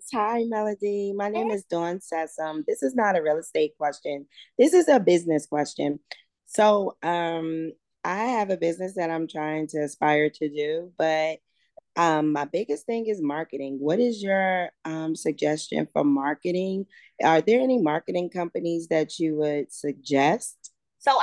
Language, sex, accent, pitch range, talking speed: English, female, American, 175-225 Hz, 160 wpm